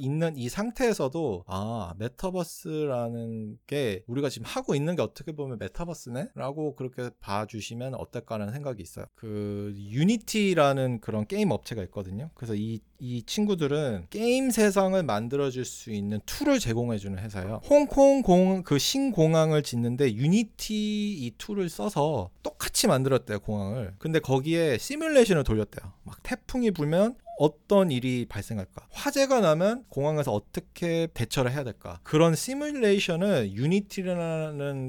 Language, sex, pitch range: Korean, male, 115-180 Hz